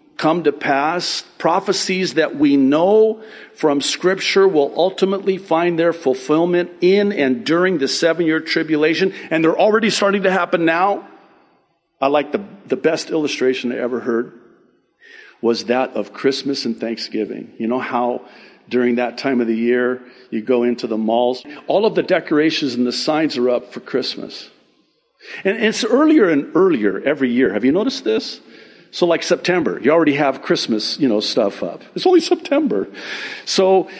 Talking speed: 165 wpm